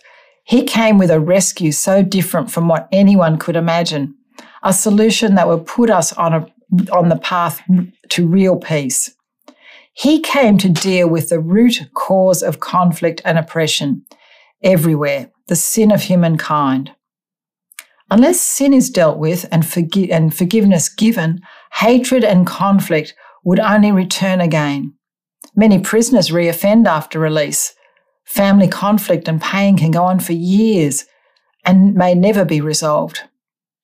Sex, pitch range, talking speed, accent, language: female, 165-215 Hz, 140 wpm, Australian, English